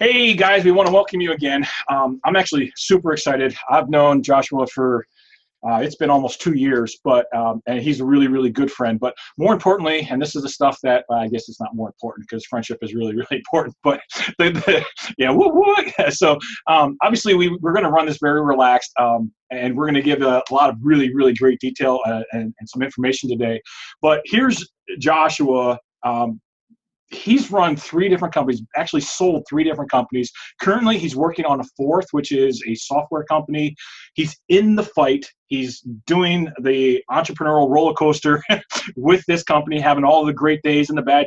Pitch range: 130-155 Hz